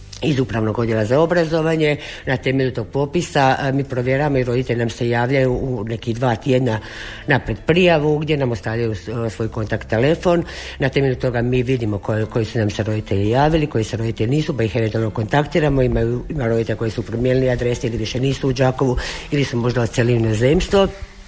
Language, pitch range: Croatian, 115-145 Hz